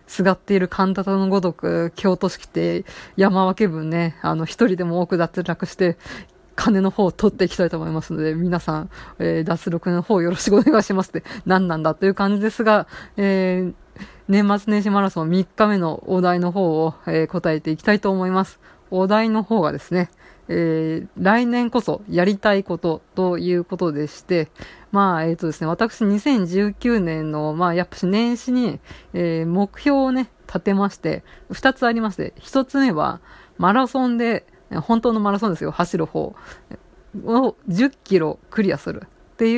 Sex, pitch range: female, 170-215 Hz